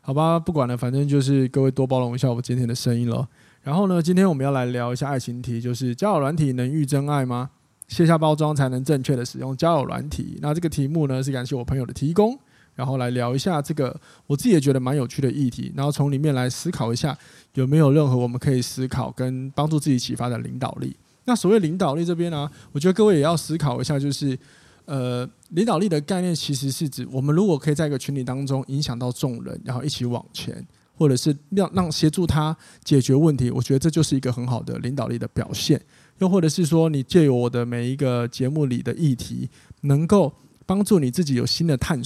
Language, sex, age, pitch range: Chinese, male, 20-39, 125-160 Hz